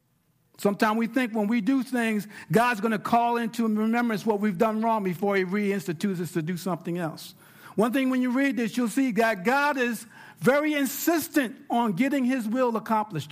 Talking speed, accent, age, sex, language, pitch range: 195 wpm, American, 50-69, male, English, 165-245 Hz